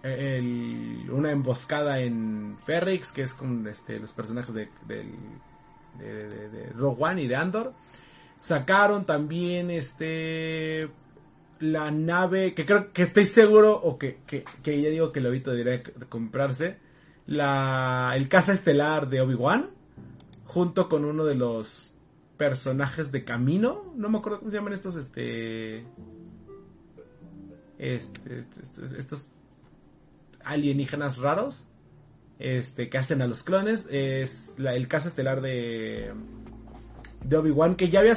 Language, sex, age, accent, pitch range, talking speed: Spanish, male, 30-49, Mexican, 125-175 Hz, 140 wpm